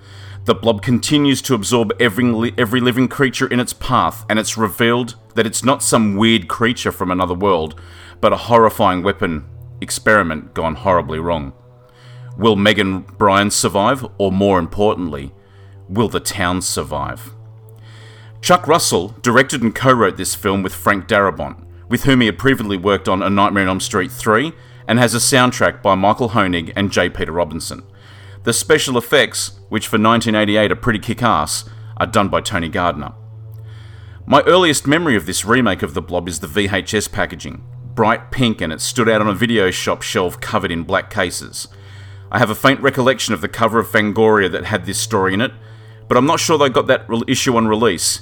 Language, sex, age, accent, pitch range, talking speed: English, male, 30-49, Australian, 100-120 Hz, 180 wpm